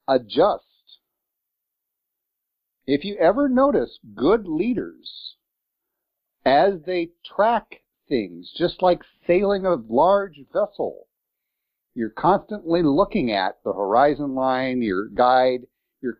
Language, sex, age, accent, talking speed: English, male, 50-69, American, 100 wpm